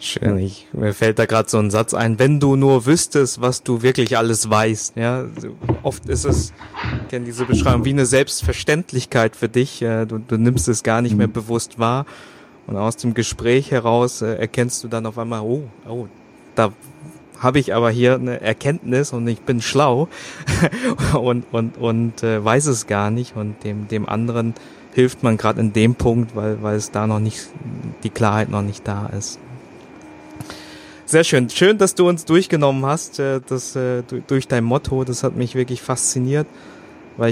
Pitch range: 115-130 Hz